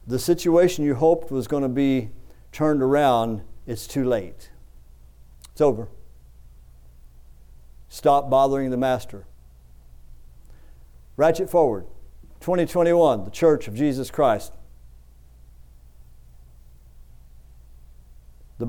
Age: 50-69